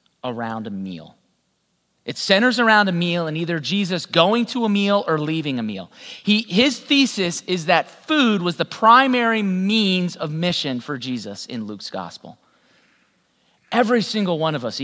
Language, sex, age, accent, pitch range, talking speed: English, male, 30-49, American, 165-250 Hz, 165 wpm